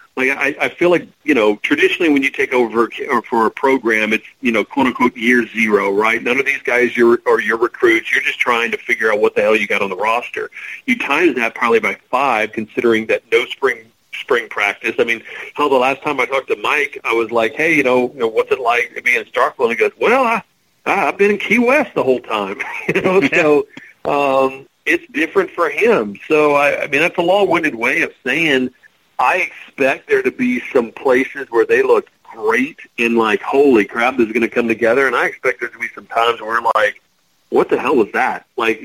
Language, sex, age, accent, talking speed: English, male, 40-59, American, 230 wpm